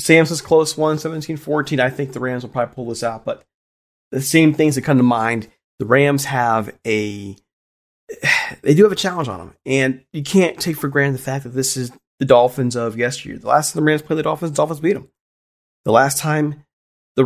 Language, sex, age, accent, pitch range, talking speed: English, male, 30-49, American, 120-160 Hz, 220 wpm